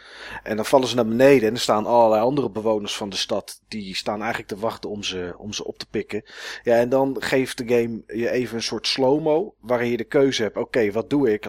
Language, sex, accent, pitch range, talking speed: Dutch, male, Dutch, 105-130 Hz, 255 wpm